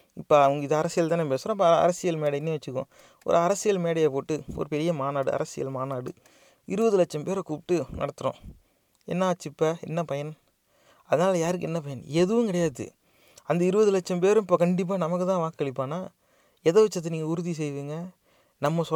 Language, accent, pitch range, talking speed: English, Indian, 150-190 Hz, 105 wpm